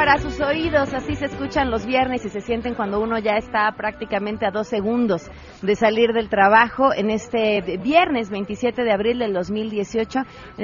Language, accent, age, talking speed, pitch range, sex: Spanish, Mexican, 30-49, 180 wpm, 175-240 Hz, female